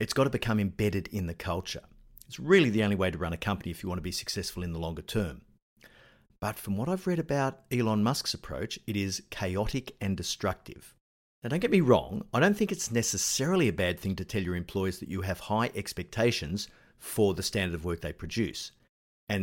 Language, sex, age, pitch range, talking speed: English, male, 50-69, 90-125 Hz, 220 wpm